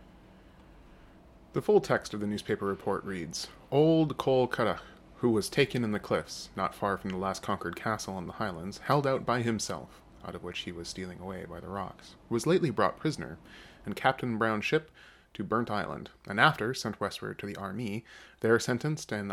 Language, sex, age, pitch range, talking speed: English, male, 20-39, 95-125 Hz, 195 wpm